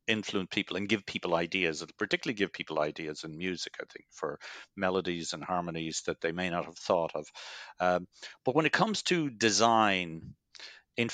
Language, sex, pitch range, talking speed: English, male, 90-110 Hz, 185 wpm